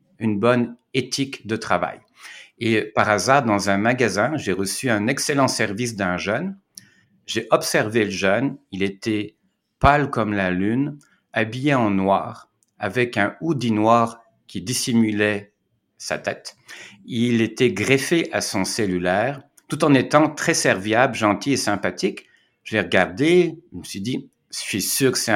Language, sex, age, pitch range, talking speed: French, male, 60-79, 100-125 Hz, 155 wpm